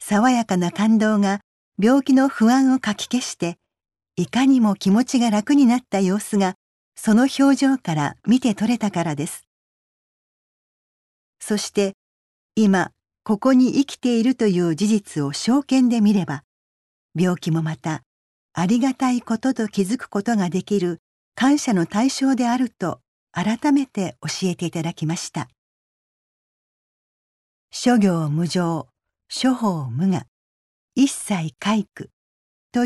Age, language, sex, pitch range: 50-69, Japanese, female, 175-250 Hz